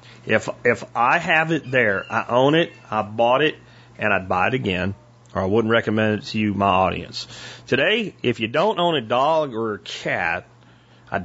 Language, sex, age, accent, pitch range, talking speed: English, male, 40-59, American, 110-135 Hz, 195 wpm